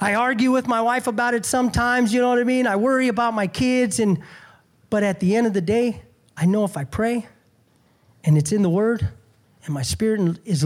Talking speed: 225 wpm